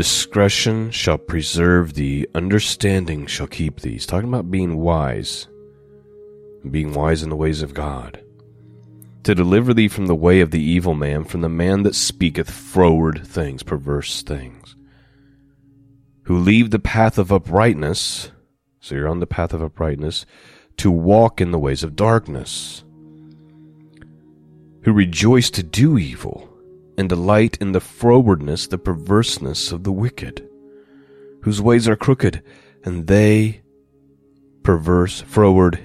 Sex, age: male, 30-49